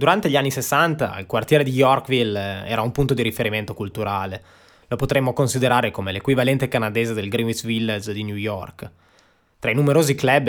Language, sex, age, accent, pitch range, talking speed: Italian, male, 20-39, native, 110-135 Hz, 170 wpm